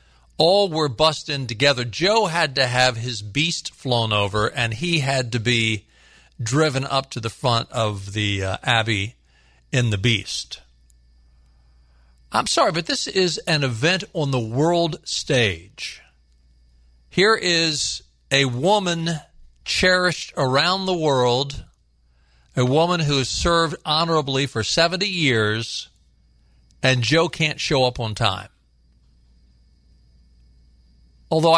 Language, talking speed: English, 125 wpm